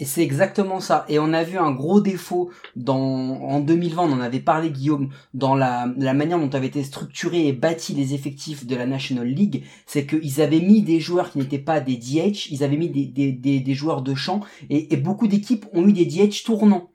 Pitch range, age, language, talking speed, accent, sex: 145-195 Hz, 30-49, French, 230 wpm, French, male